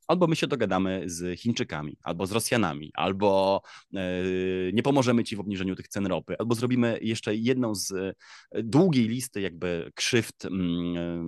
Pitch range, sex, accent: 95-120 Hz, male, native